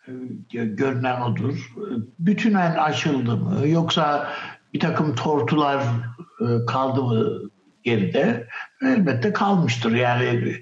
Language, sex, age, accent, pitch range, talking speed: Turkish, male, 60-79, native, 115-140 Hz, 90 wpm